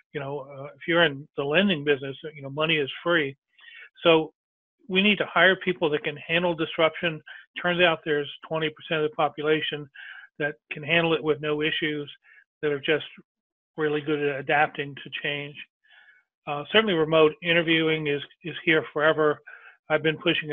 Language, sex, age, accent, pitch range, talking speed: English, male, 40-59, American, 150-170 Hz, 170 wpm